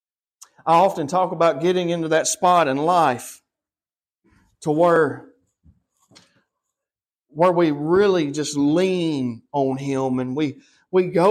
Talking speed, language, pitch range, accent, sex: 120 wpm, English, 165-205 Hz, American, male